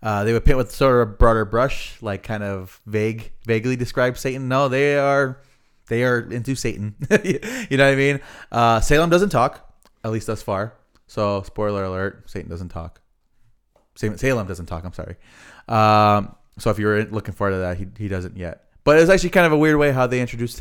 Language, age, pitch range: English, 20-39, 95-125 Hz